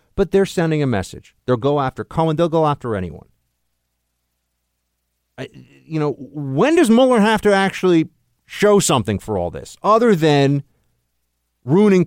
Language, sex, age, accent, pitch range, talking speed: English, male, 50-69, American, 90-150 Hz, 150 wpm